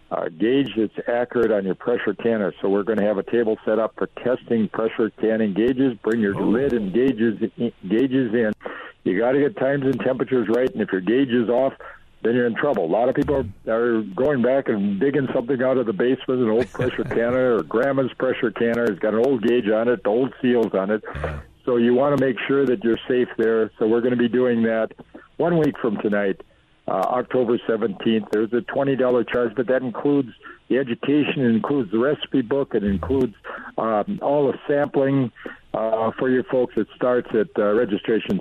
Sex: male